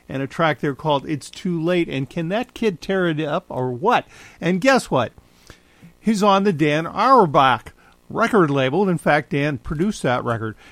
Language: English